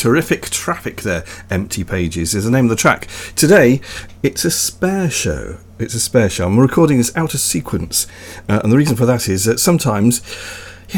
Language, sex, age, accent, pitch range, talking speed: English, male, 40-59, British, 95-125 Hz, 195 wpm